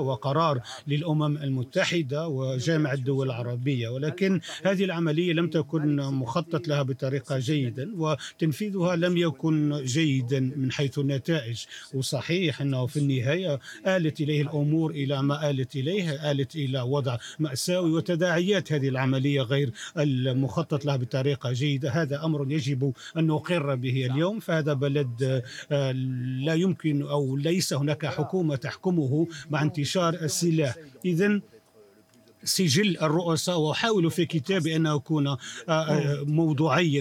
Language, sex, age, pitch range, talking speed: Arabic, male, 50-69, 140-165 Hz, 120 wpm